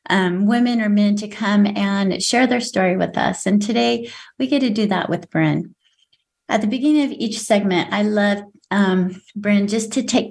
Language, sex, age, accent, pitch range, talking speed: English, female, 30-49, American, 180-225 Hz, 200 wpm